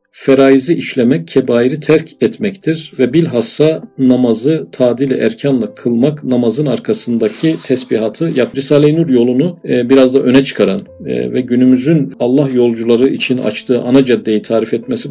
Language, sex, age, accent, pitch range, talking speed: Turkish, male, 40-59, native, 120-150 Hz, 125 wpm